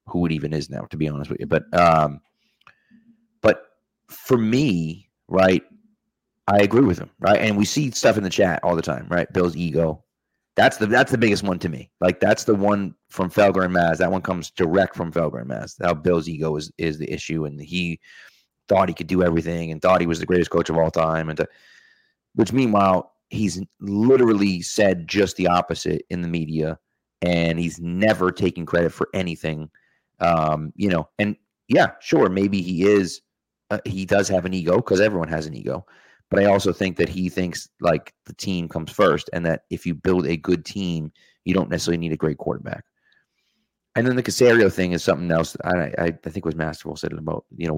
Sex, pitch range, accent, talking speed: male, 80-100 Hz, American, 210 wpm